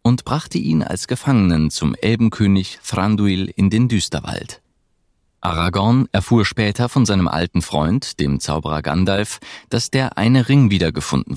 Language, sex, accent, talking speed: German, male, German, 135 wpm